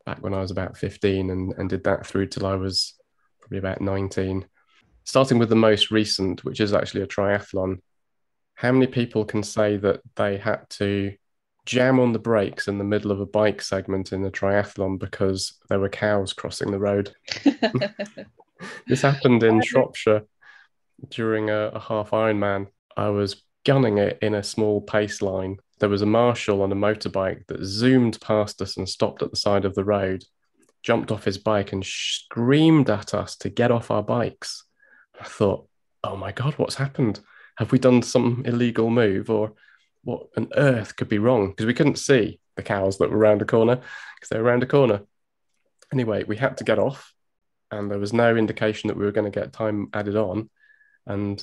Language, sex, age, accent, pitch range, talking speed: English, male, 20-39, British, 100-115 Hz, 190 wpm